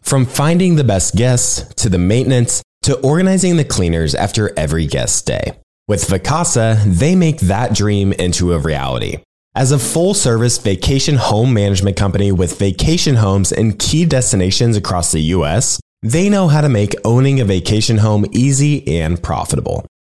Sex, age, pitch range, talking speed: male, 20-39, 95-140 Hz, 160 wpm